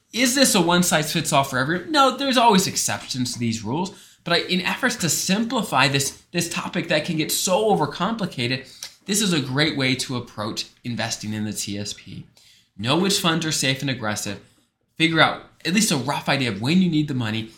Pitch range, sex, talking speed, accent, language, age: 110-160 Hz, male, 195 wpm, American, English, 20-39